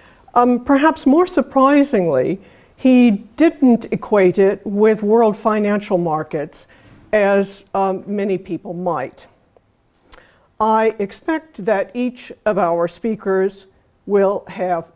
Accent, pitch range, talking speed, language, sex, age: American, 180-215 Hz, 105 wpm, English, female, 60-79